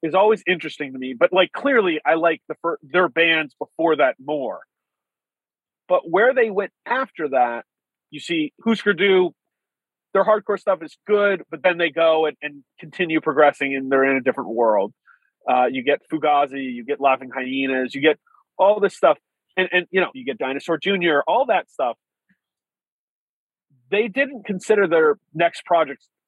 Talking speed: 170 wpm